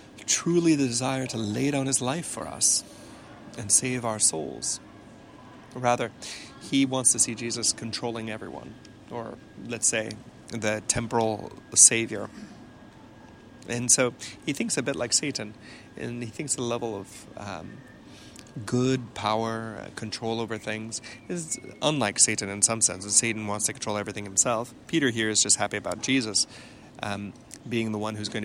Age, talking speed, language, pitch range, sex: 30-49, 155 wpm, English, 110-130 Hz, male